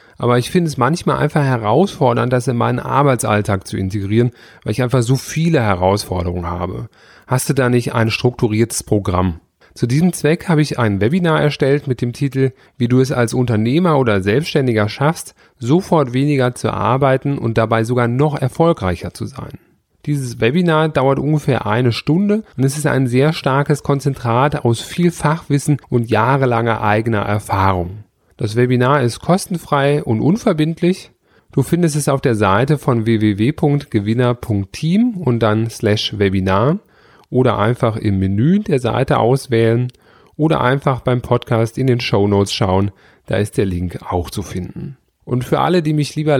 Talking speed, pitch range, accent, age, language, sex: 160 wpm, 110-150 Hz, German, 30-49, German, male